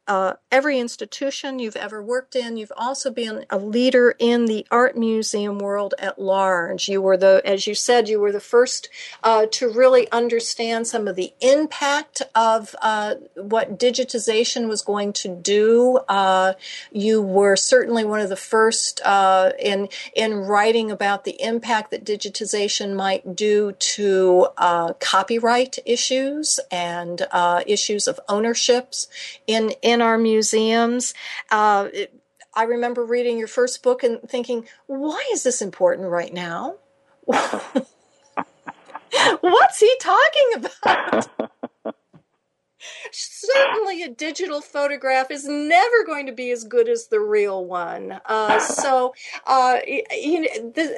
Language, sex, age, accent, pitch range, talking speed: English, female, 50-69, American, 205-270 Hz, 140 wpm